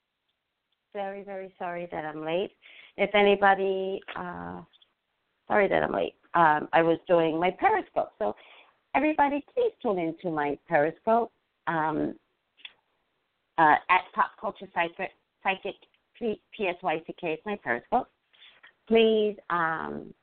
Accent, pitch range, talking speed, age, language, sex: American, 155-205 Hz, 115 wpm, 40-59, English, female